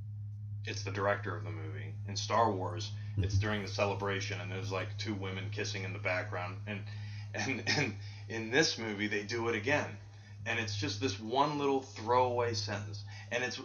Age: 30-49